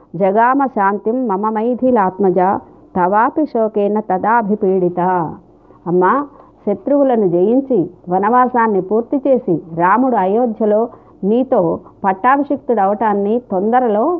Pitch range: 185-235 Hz